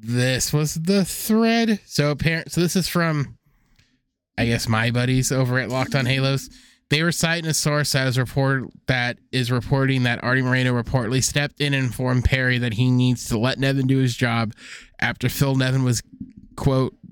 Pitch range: 125-145 Hz